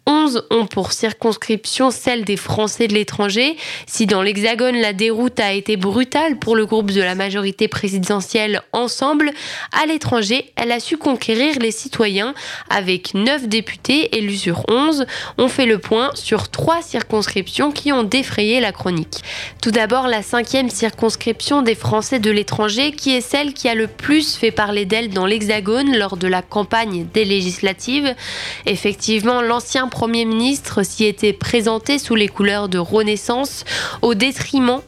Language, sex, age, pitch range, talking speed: French, female, 20-39, 210-255 Hz, 160 wpm